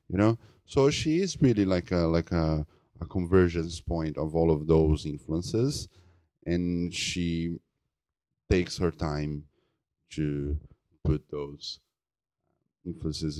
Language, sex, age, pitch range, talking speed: English, male, 30-49, 80-90 Hz, 120 wpm